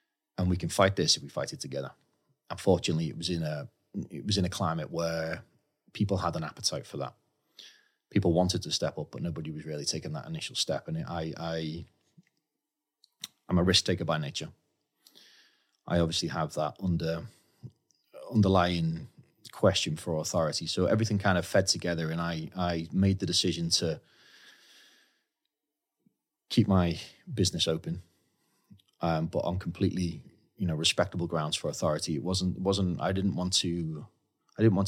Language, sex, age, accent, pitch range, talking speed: English, male, 30-49, British, 80-100 Hz, 165 wpm